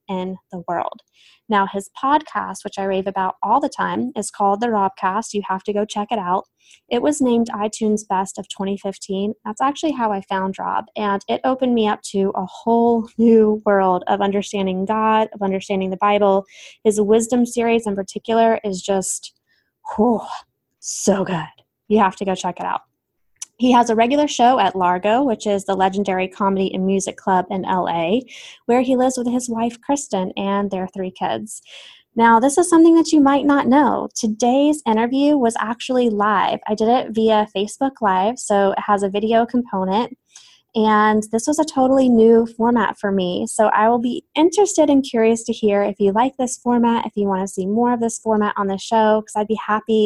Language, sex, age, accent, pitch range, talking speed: English, female, 20-39, American, 195-235 Hz, 195 wpm